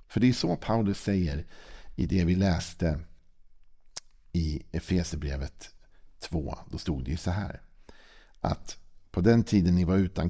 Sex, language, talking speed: male, Swedish, 150 wpm